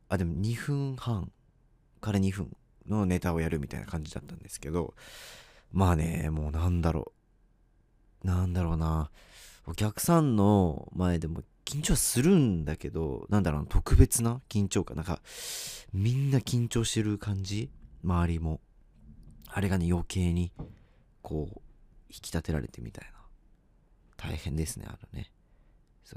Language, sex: Japanese, male